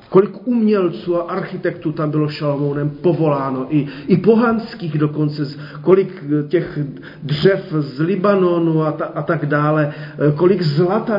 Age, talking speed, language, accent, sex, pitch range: 40-59, 130 wpm, Czech, native, male, 145-165 Hz